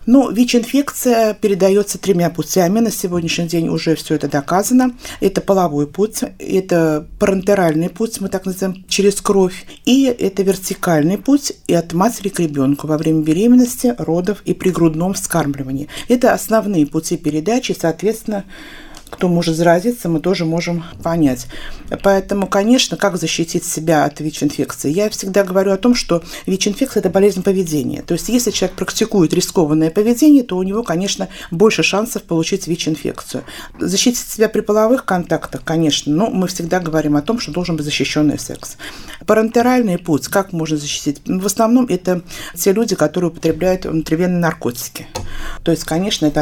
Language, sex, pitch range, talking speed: Russian, female, 160-210 Hz, 155 wpm